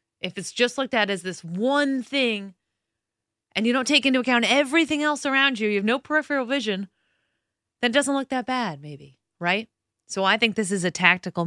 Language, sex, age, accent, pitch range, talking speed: English, female, 30-49, American, 175-240 Hz, 200 wpm